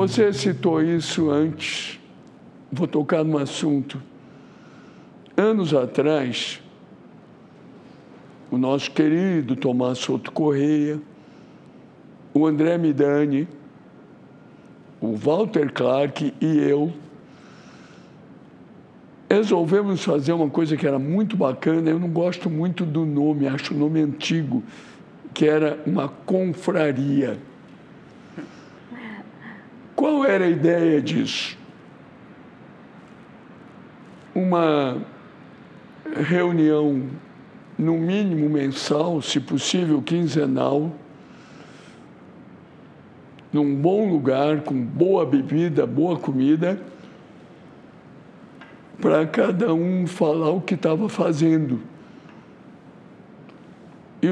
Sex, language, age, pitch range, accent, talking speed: male, English, 60-79, 145-170 Hz, Brazilian, 85 wpm